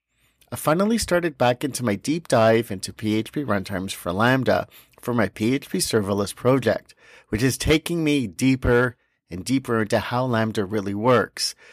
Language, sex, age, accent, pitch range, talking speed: English, male, 50-69, American, 110-150 Hz, 155 wpm